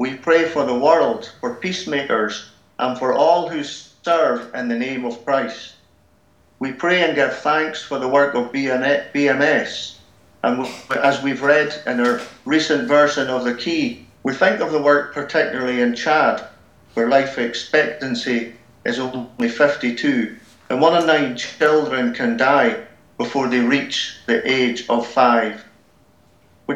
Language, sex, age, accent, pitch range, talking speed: English, male, 50-69, British, 125-155 Hz, 150 wpm